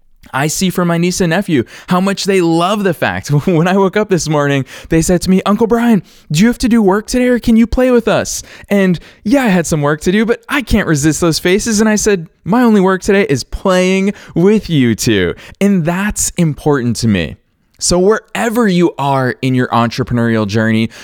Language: English